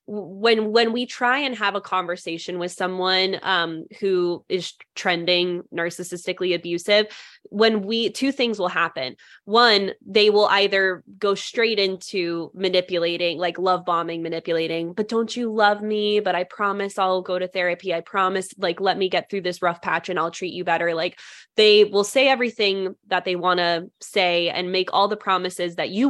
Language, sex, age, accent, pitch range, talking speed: English, female, 20-39, American, 180-215 Hz, 180 wpm